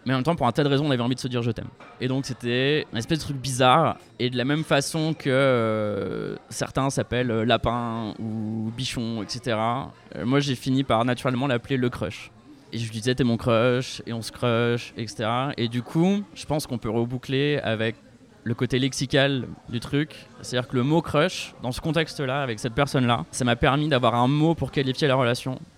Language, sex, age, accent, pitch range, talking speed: French, male, 20-39, French, 115-135 Hz, 235 wpm